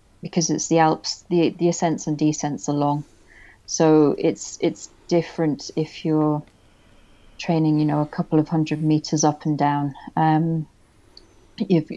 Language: English